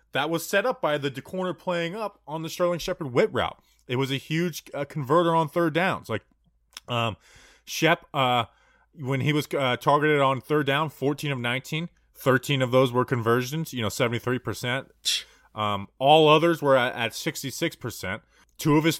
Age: 20-39